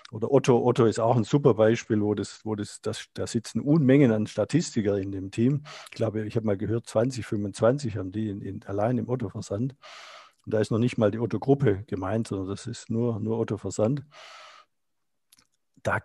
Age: 50-69